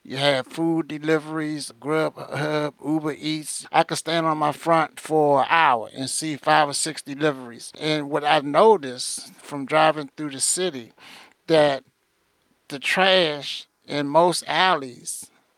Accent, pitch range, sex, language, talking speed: American, 140-160 Hz, male, English, 145 wpm